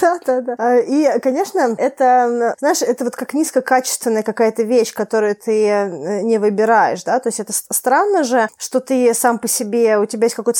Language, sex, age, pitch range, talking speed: Russian, female, 20-39, 205-250 Hz, 180 wpm